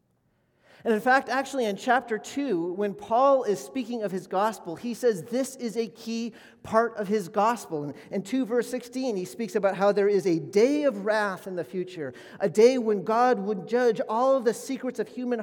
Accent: American